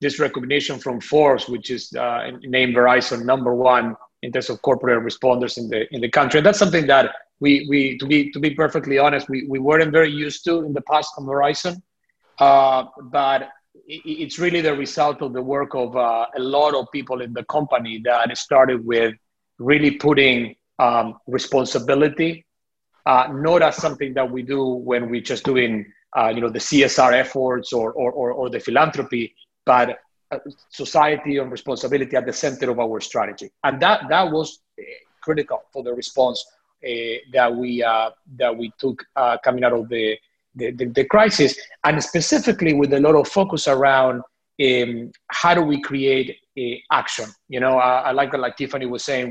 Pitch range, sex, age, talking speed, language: 125-150 Hz, male, 30-49, 185 wpm, English